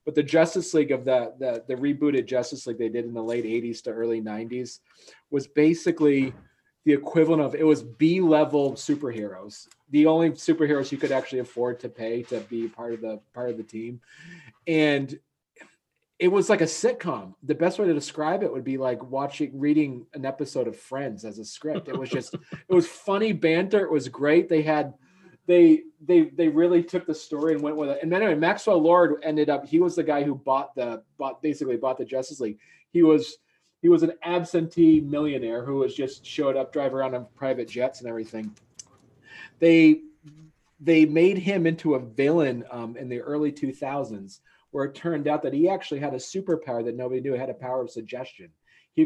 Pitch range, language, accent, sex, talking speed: 125-160 Hz, English, American, male, 200 wpm